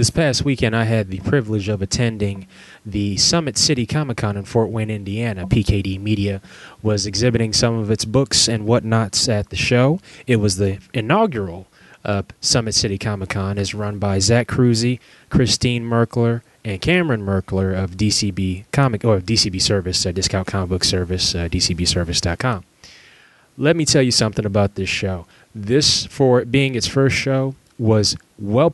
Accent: American